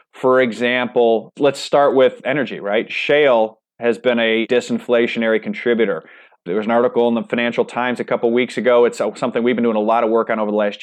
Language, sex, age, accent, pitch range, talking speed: English, male, 30-49, American, 110-125 Hz, 210 wpm